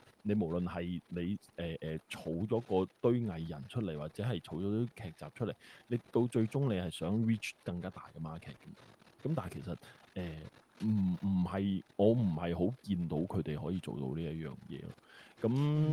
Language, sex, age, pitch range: Chinese, male, 20-39, 90-125 Hz